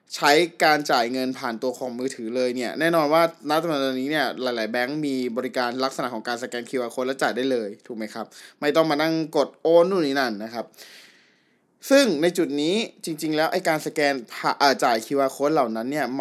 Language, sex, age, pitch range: Thai, male, 20-39, 130-165 Hz